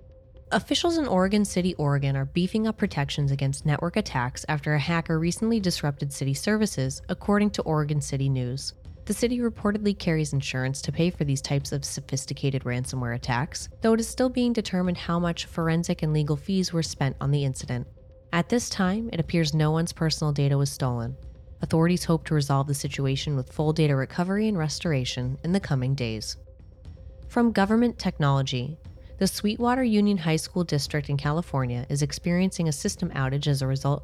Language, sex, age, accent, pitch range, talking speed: English, female, 20-39, American, 135-185 Hz, 180 wpm